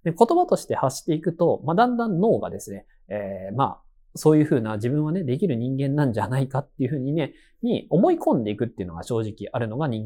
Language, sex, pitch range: Japanese, male, 125-205 Hz